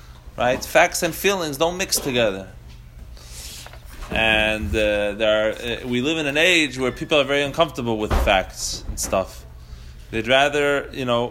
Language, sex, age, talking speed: English, male, 30-49, 160 wpm